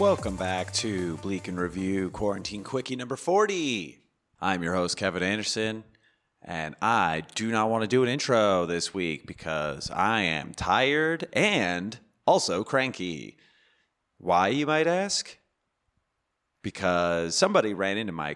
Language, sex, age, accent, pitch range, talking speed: English, male, 30-49, American, 95-135 Hz, 135 wpm